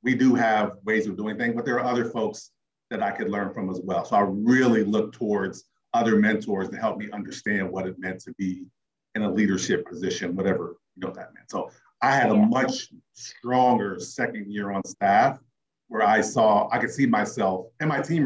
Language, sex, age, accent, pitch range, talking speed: English, male, 40-59, American, 105-170 Hz, 210 wpm